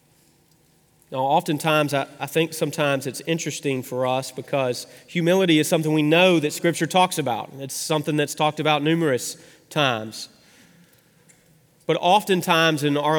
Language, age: English, 30-49